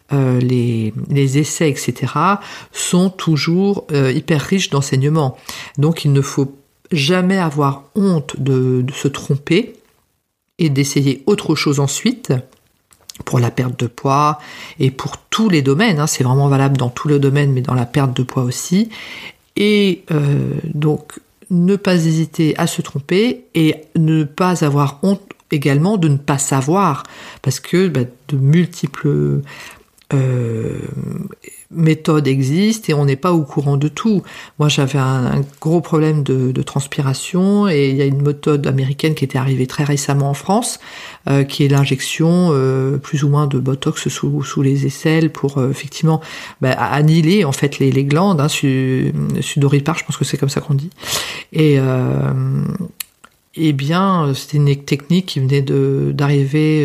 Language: French